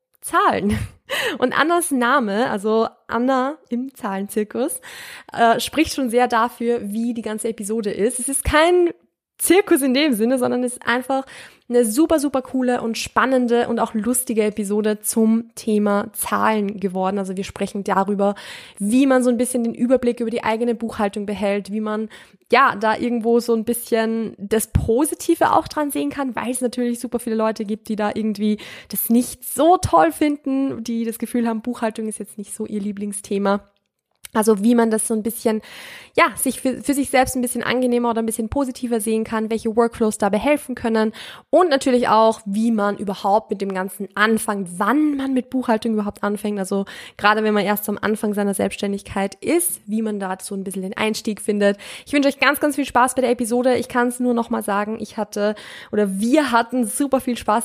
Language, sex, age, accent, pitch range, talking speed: German, female, 20-39, German, 210-250 Hz, 195 wpm